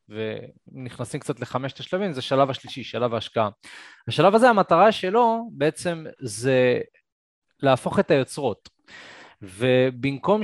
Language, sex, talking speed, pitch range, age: Hebrew, male, 110 wpm, 115-155 Hz, 20-39